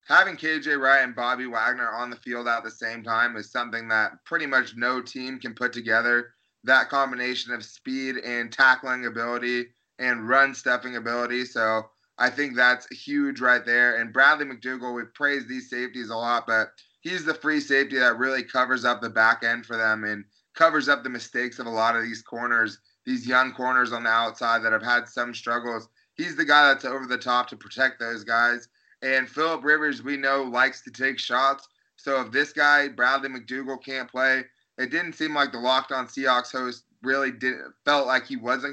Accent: American